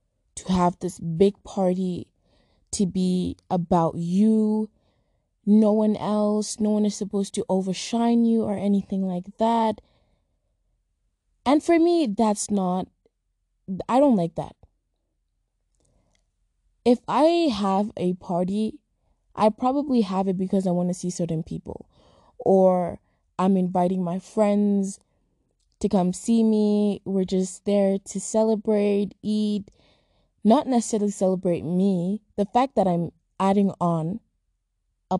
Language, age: English, 20-39